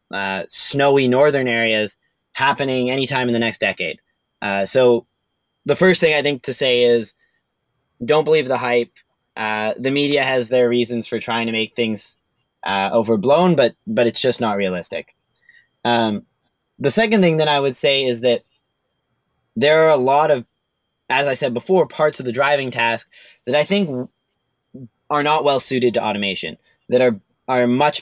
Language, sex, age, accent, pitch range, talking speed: English, male, 20-39, American, 115-140 Hz, 170 wpm